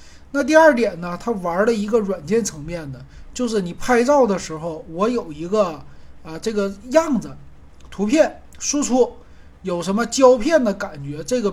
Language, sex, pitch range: Chinese, male, 160-225 Hz